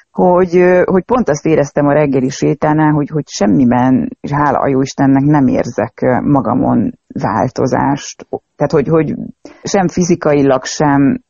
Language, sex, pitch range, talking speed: Hungarian, female, 125-150 Hz, 135 wpm